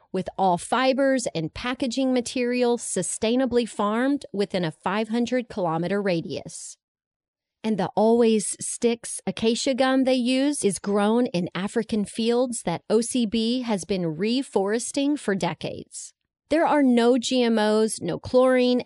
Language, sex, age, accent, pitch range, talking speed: English, female, 30-49, American, 185-260 Hz, 120 wpm